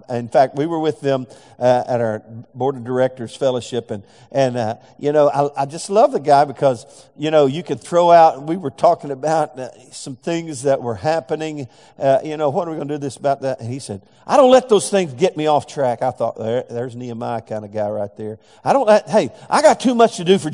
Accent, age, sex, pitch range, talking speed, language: American, 50-69, male, 130-175 Hz, 250 wpm, English